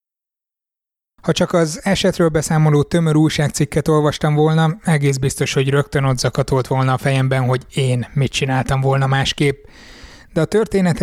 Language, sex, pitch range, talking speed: Hungarian, male, 135-155 Hz, 140 wpm